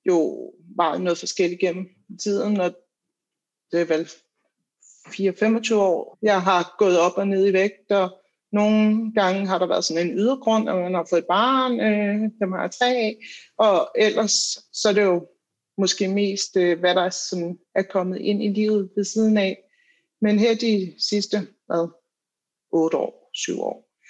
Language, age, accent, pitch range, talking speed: Danish, 60-79, native, 185-215 Hz, 175 wpm